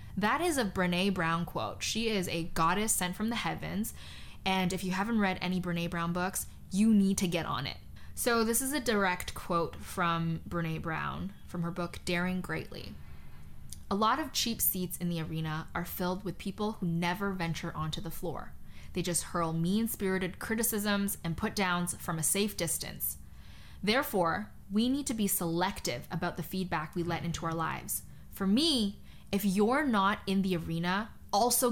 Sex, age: female, 10-29